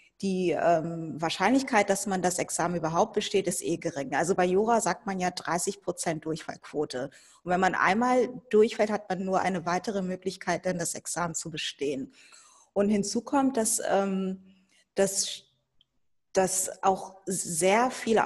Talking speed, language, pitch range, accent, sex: 155 wpm, German, 180-215 Hz, German, female